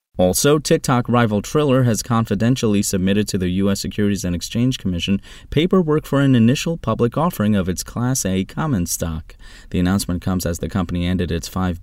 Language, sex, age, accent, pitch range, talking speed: English, male, 30-49, American, 95-130 Hz, 180 wpm